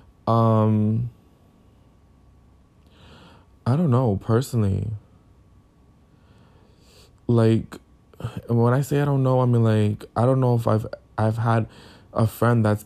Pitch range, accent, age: 100-115 Hz, American, 20-39